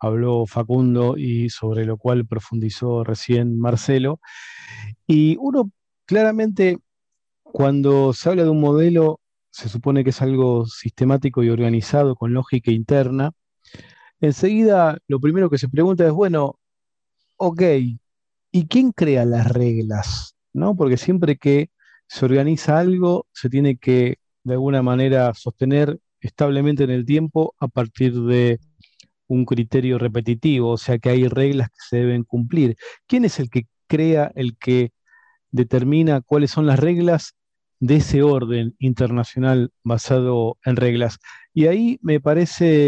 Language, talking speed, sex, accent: Spanish, 135 wpm, male, Argentinian